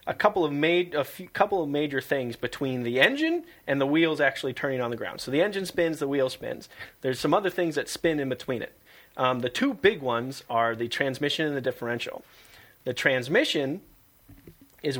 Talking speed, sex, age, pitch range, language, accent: 205 wpm, male, 30-49, 120-150 Hz, English, American